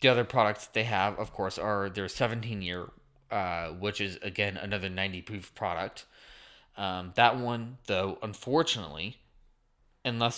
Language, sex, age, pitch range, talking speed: English, male, 20-39, 95-120 Hz, 125 wpm